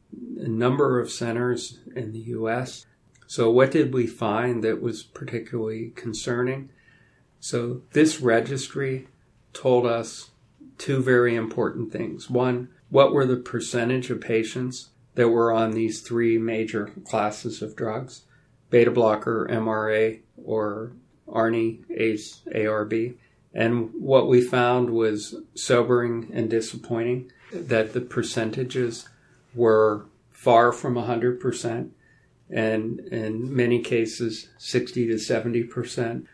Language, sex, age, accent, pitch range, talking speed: English, male, 40-59, American, 110-125 Hz, 120 wpm